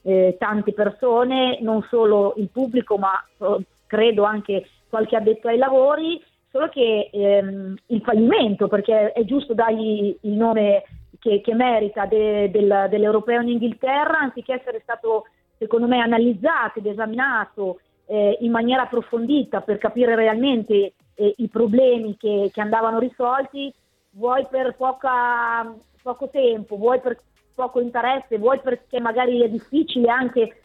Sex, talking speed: female, 130 wpm